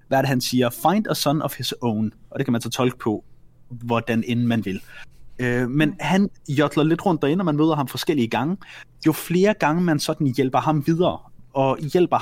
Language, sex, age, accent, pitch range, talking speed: Danish, male, 30-49, native, 125-155 Hz, 205 wpm